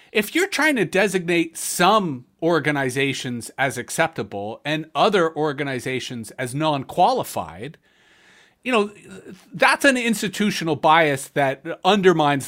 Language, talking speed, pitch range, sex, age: English, 105 wpm, 150-235 Hz, male, 40-59